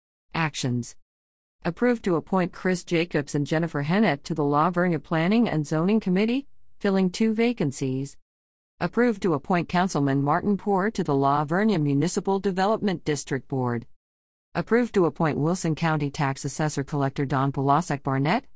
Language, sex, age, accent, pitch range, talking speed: English, female, 50-69, American, 140-190 Hz, 145 wpm